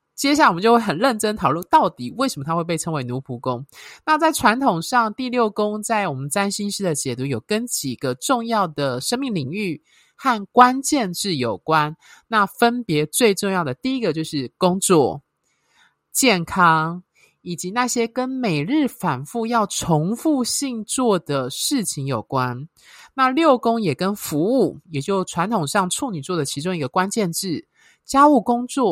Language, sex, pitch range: Chinese, male, 155-225 Hz